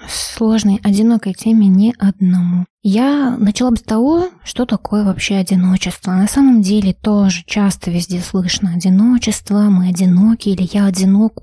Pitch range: 195-225 Hz